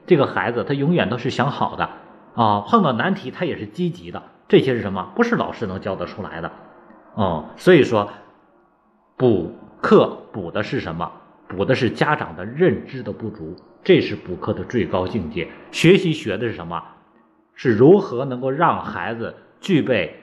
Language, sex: Chinese, male